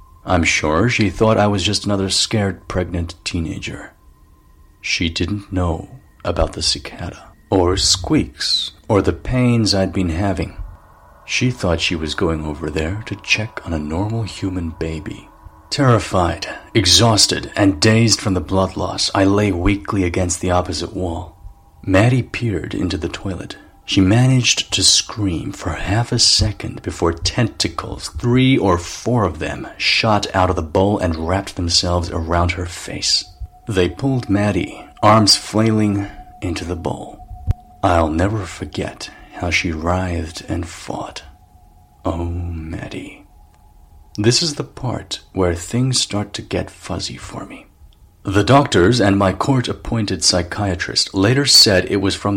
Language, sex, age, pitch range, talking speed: English, male, 40-59, 85-105 Hz, 145 wpm